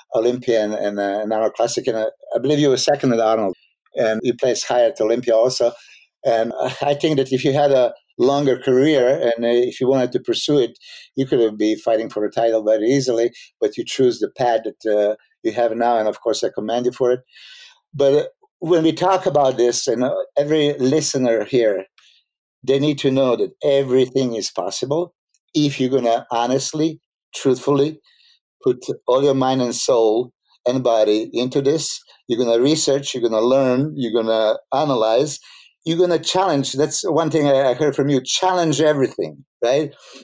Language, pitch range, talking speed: English, 120-150 Hz, 190 wpm